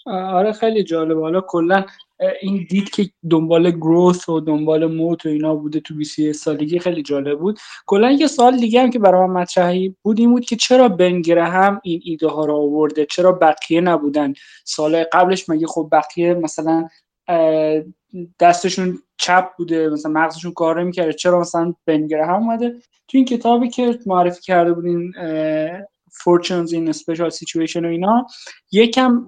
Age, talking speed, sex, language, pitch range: 20-39, 160 wpm, male, Persian, 160-195 Hz